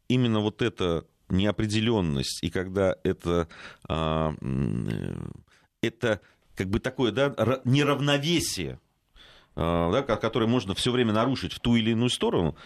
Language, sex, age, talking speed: Russian, male, 40-59, 115 wpm